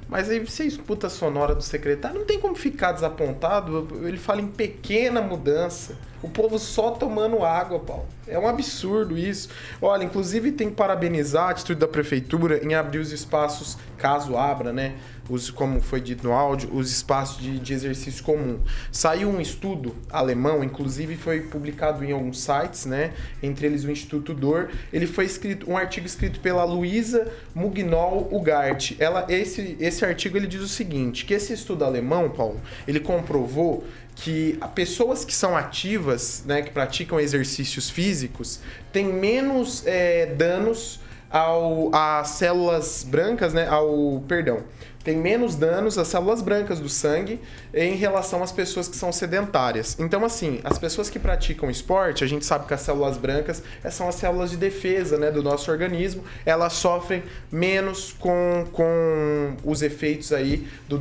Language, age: Portuguese, 20-39